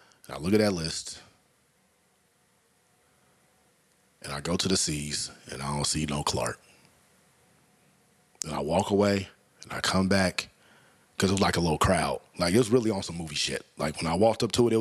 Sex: male